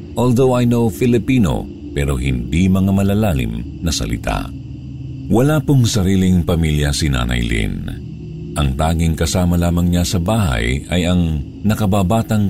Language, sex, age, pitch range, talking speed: Filipino, male, 50-69, 75-100 Hz, 130 wpm